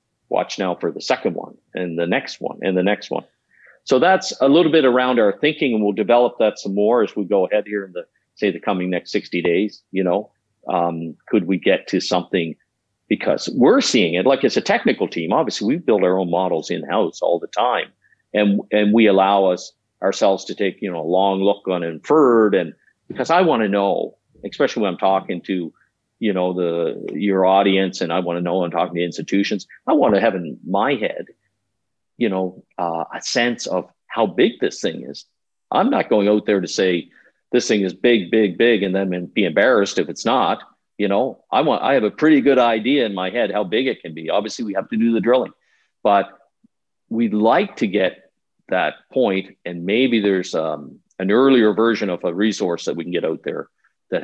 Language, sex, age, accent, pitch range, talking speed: English, male, 50-69, American, 90-110 Hz, 215 wpm